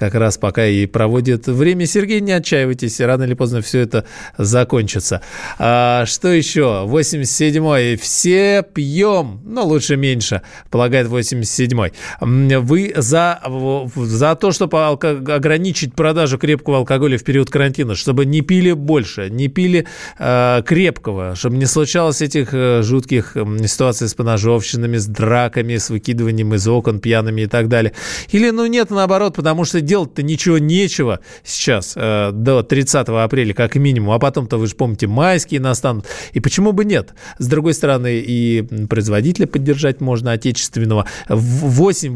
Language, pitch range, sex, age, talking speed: Russian, 115-155 Hz, male, 20-39, 140 wpm